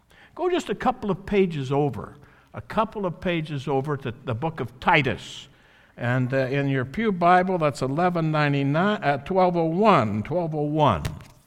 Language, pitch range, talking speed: English, 120-185 Hz, 140 wpm